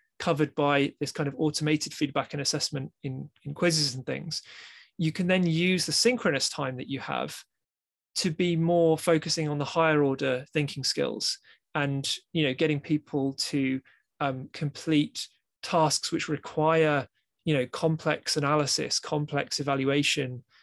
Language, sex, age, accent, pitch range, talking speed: English, male, 20-39, British, 145-170 Hz, 150 wpm